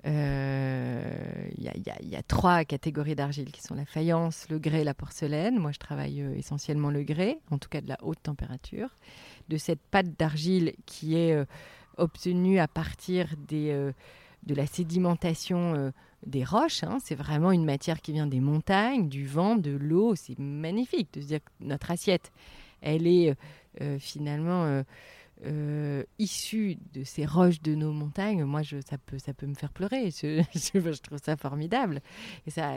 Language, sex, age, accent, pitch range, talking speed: French, female, 30-49, French, 140-175 Hz, 185 wpm